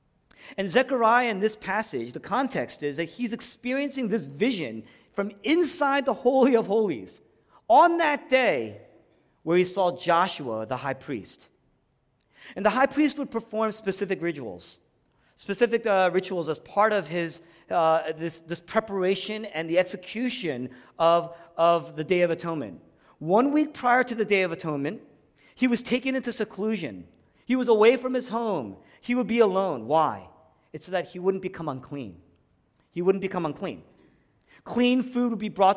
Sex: male